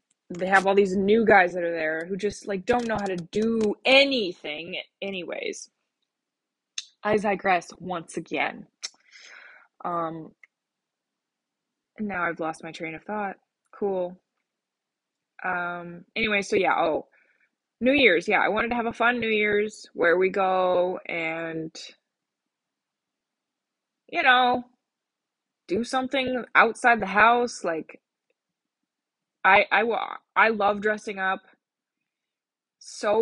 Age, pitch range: 20-39, 180-240 Hz